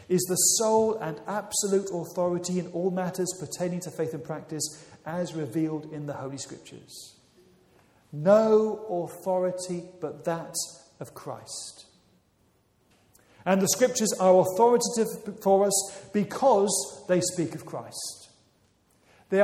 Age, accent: 40-59, British